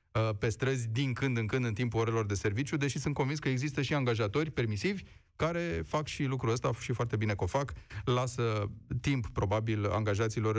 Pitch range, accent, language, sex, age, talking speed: 105-135 Hz, native, Romanian, male, 30-49, 195 wpm